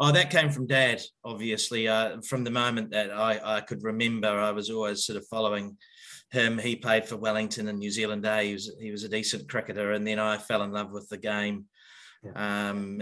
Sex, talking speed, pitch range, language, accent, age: male, 215 wpm, 105-125 Hz, English, Australian, 30-49